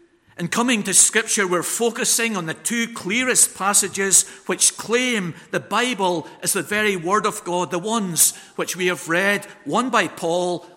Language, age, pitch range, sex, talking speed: English, 50-69, 170-220 Hz, male, 165 wpm